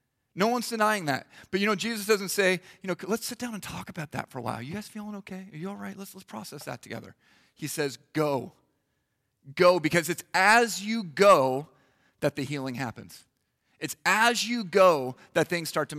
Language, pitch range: English, 130-180 Hz